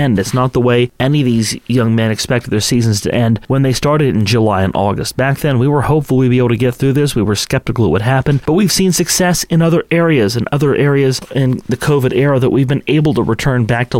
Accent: American